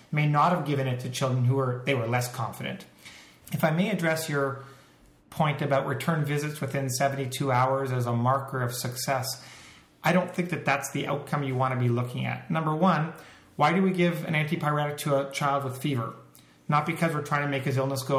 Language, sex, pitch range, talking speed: English, male, 130-150 Hz, 215 wpm